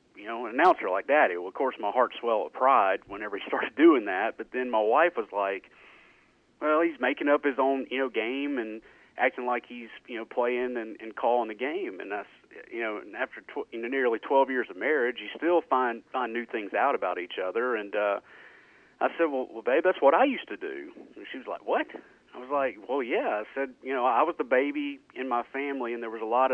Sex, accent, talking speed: male, American, 250 wpm